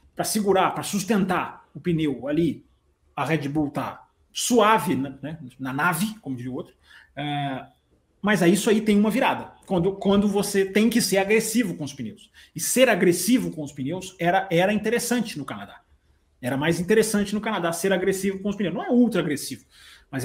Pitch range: 145-215 Hz